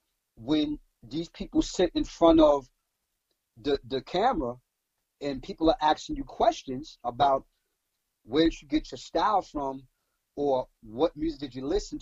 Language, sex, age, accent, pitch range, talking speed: English, male, 40-59, American, 135-225 Hz, 150 wpm